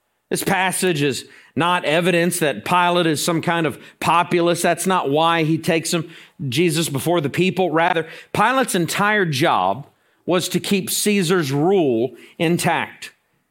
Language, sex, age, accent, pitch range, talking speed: English, male, 50-69, American, 160-185 Hz, 140 wpm